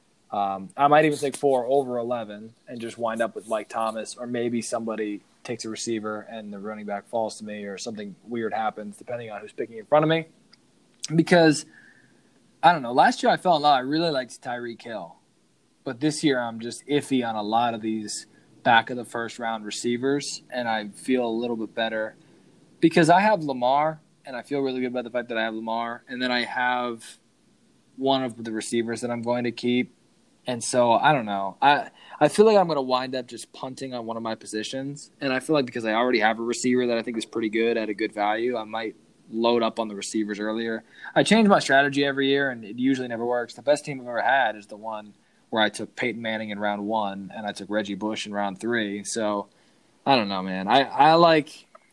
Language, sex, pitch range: English, male, 110-130 Hz